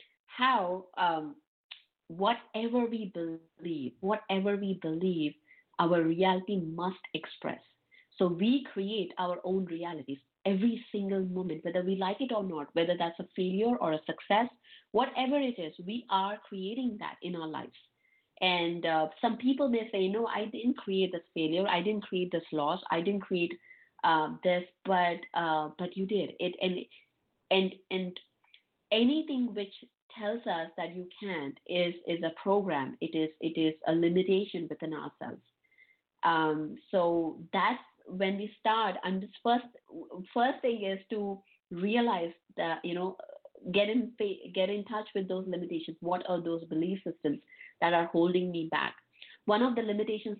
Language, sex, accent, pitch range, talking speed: English, female, Indian, 170-215 Hz, 160 wpm